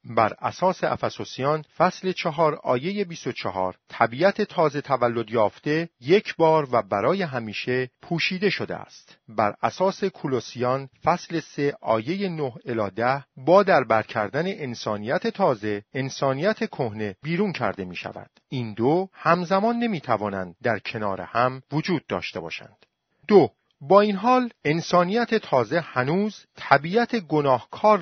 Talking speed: 130 wpm